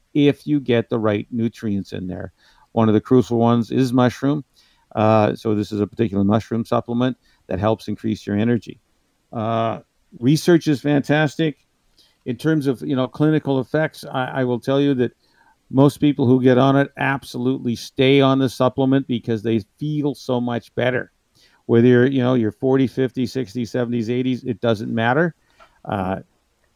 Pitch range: 115-130 Hz